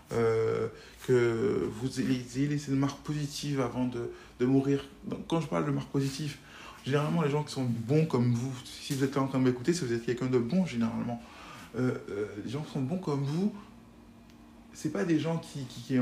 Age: 20-39